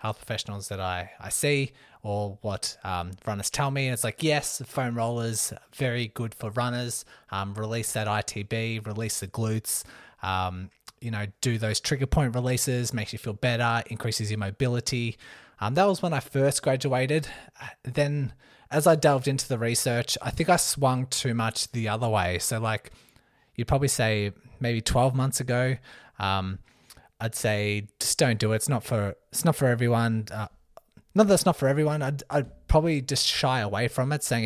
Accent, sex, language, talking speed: Australian, male, English, 185 wpm